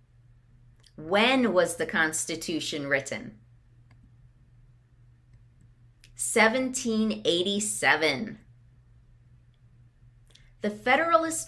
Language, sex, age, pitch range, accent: English, female, 30-49, 120-185 Hz, American